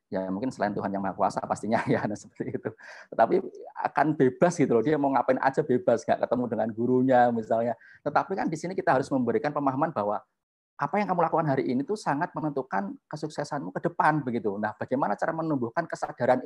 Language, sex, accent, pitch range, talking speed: Indonesian, male, native, 120-180 Hz, 195 wpm